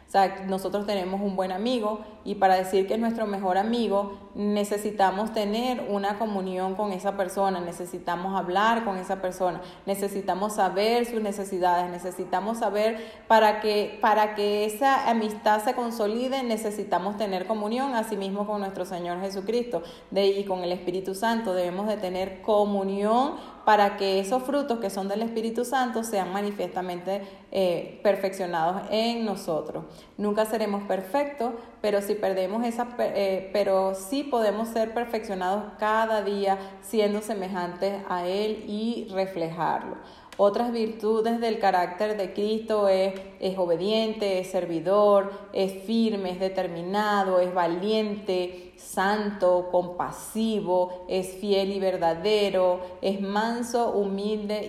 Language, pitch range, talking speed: Spanish, 190-215 Hz, 130 wpm